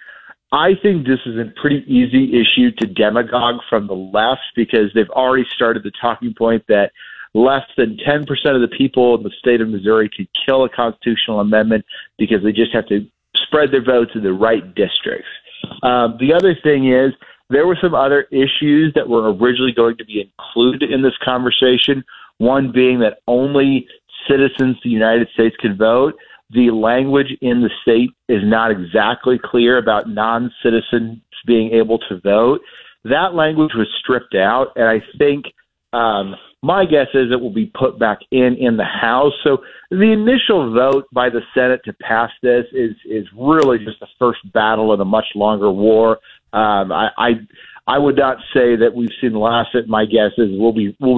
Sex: male